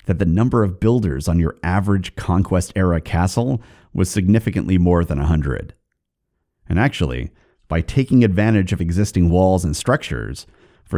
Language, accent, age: English, American, 30-49